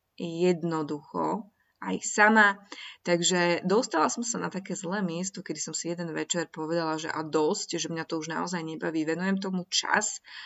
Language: Slovak